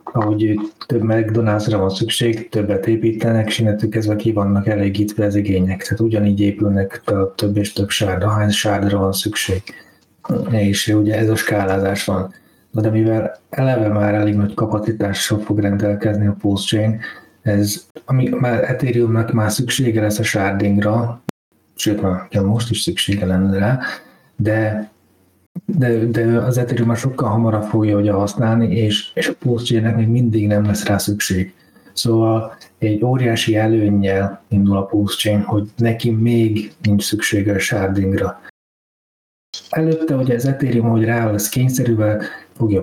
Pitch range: 105-115 Hz